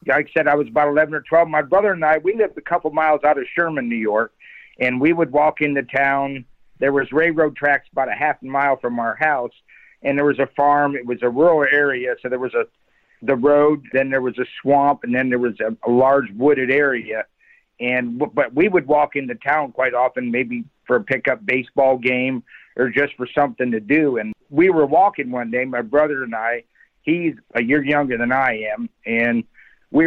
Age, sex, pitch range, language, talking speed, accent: 50-69, male, 125-155 Hz, English, 220 wpm, American